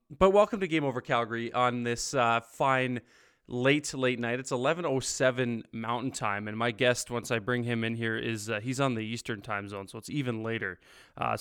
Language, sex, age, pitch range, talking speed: English, male, 20-39, 120-150 Hz, 205 wpm